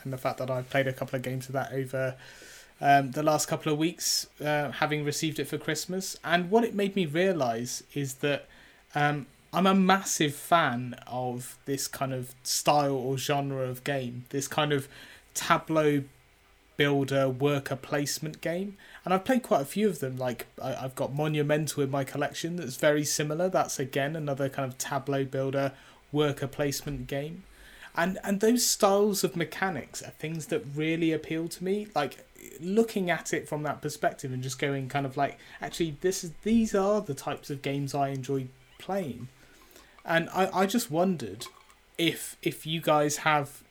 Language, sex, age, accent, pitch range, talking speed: English, male, 30-49, British, 135-160 Hz, 180 wpm